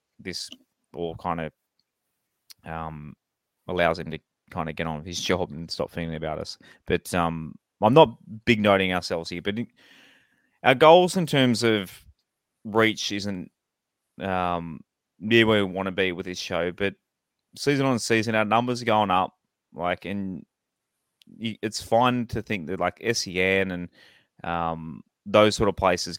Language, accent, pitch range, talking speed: English, Australian, 85-110 Hz, 160 wpm